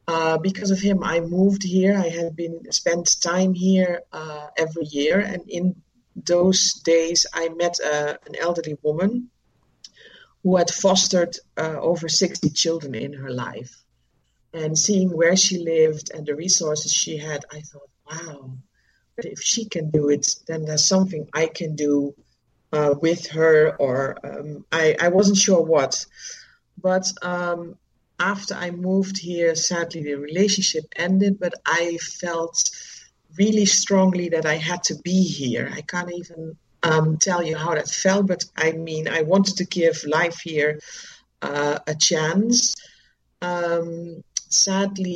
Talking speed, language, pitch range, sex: 150 wpm, English, 155-180 Hz, female